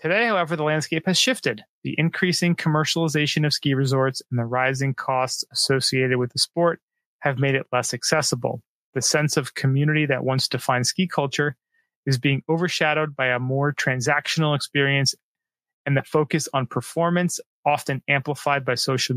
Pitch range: 135-160 Hz